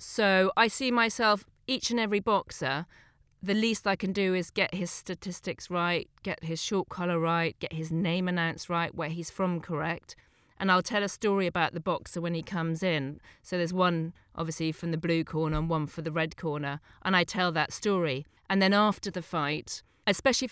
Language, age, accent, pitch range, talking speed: English, 40-59, British, 165-195 Hz, 200 wpm